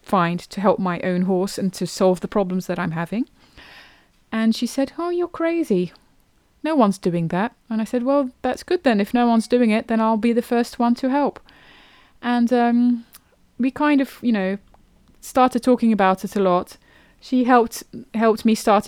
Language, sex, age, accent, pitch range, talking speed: English, female, 20-39, British, 185-230 Hz, 195 wpm